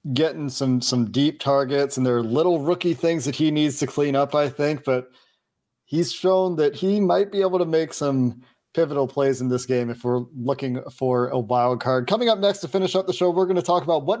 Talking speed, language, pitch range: 235 wpm, English, 130-155 Hz